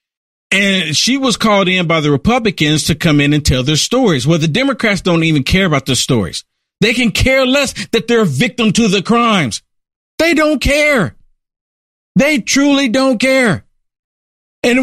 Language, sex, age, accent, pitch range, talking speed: English, male, 50-69, American, 170-230 Hz, 175 wpm